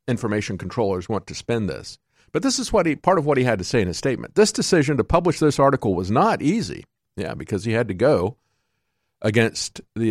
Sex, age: male, 50-69